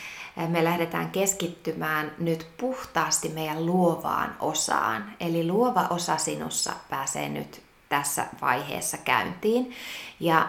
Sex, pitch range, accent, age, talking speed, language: female, 150-180 Hz, native, 20-39, 105 wpm, Finnish